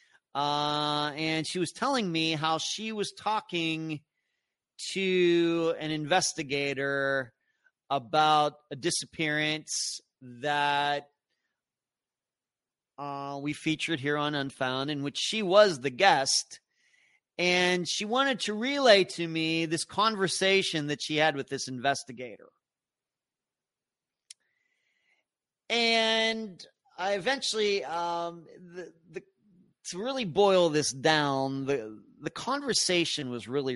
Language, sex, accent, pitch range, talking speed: English, male, American, 140-190 Hz, 105 wpm